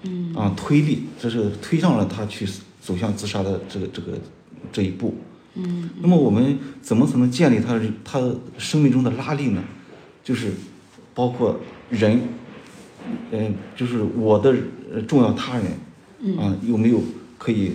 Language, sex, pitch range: Chinese, male, 105-130 Hz